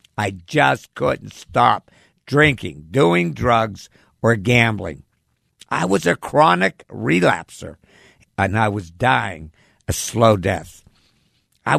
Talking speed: 110 wpm